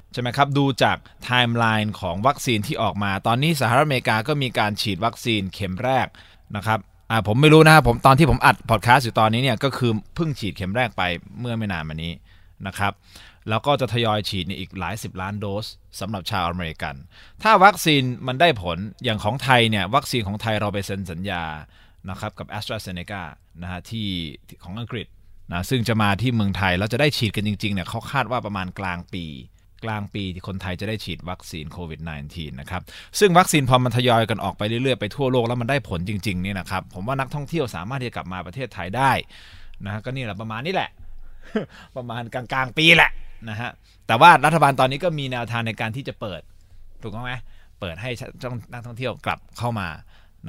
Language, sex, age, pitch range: Thai, male, 20-39, 90-125 Hz